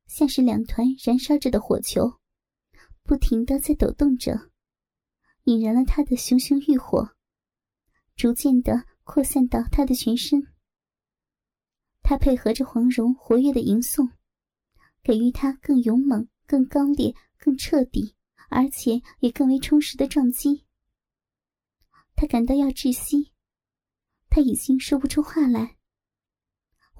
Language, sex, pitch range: Chinese, male, 245-285 Hz